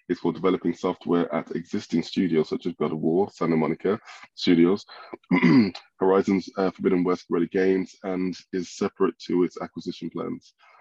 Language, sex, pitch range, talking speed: English, male, 85-95 Hz, 155 wpm